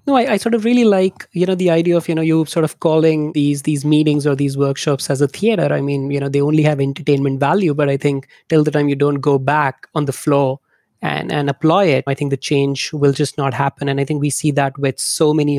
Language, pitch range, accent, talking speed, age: English, 140-165 Hz, Indian, 270 wpm, 30-49